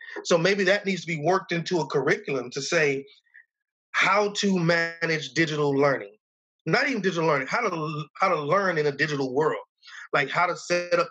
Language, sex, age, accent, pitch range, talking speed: English, male, 30-49, American, 140-185 Hz, 190 wpm